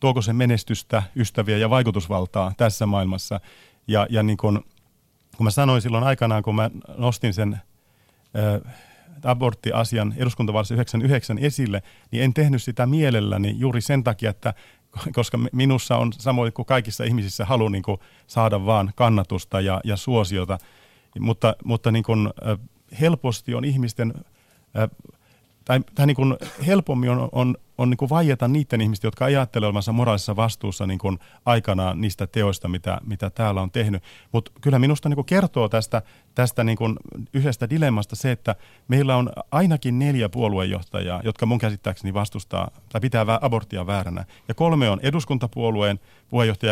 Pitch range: 105-125 Hz